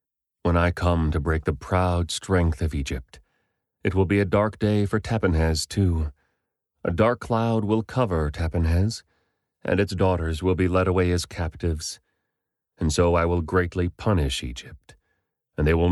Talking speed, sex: 165 wpm, male